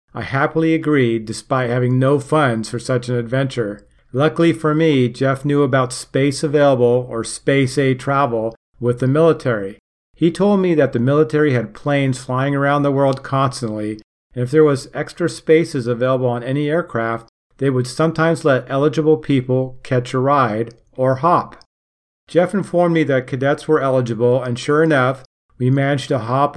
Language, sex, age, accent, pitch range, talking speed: English, male, 50-69, American, 120-145 Hz, 165 wpm